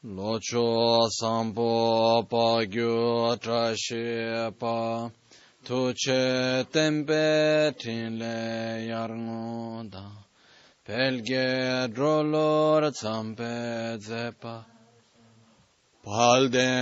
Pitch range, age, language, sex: 115-145 Hz, 20-39, Italian, male